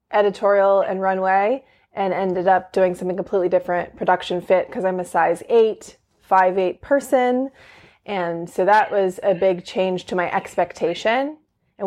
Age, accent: 20-39, American